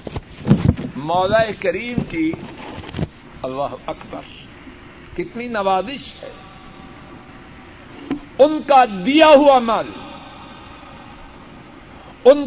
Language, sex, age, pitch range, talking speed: Urdu, male, 60-79, 190-275 Hz, 65 wpm